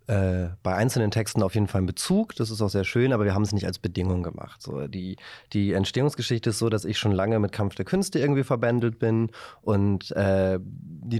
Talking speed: 225 wpm